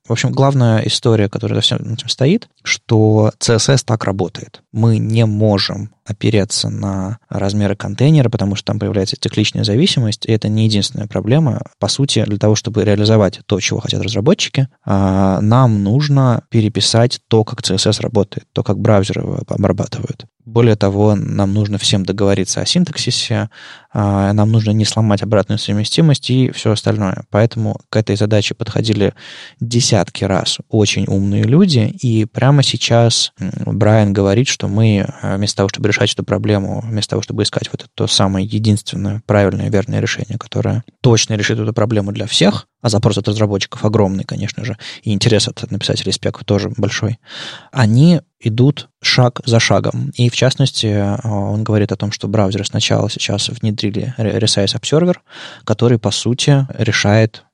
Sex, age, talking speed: male, 20-39, 150 wpm